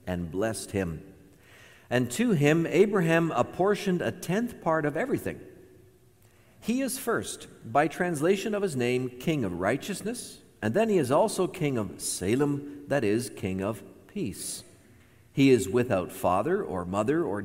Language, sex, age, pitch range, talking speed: English, male, 50-69, 105-155 Hz, 150 wpm